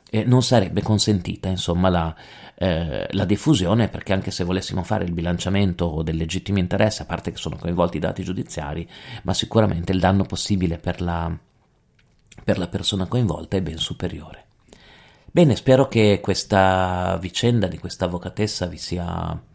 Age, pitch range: 40-59, 85-105 Hz